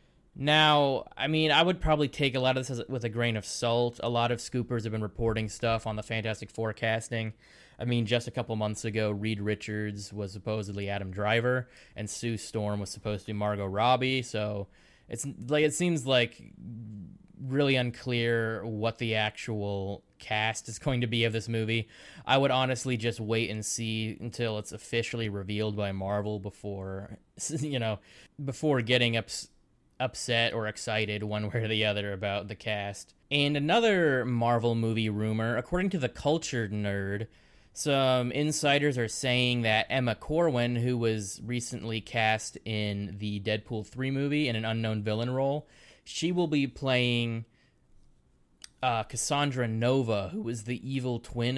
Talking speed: 165 wpm